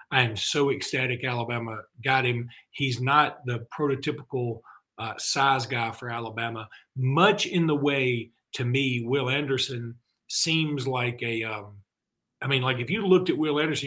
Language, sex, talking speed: English, male, 155 wpm